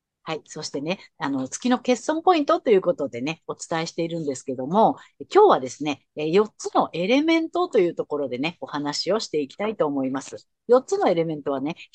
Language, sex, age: Japanese, female, 50-69